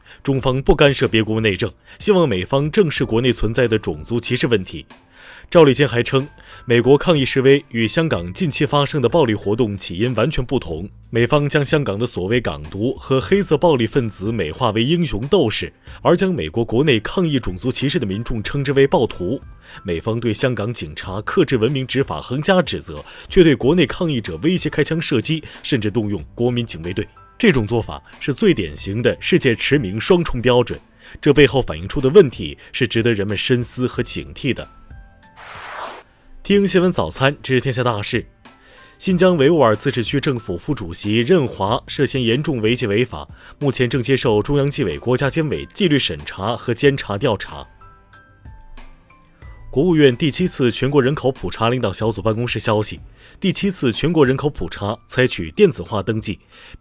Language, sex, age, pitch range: Chinese, male, 20-39, 110-140 Hz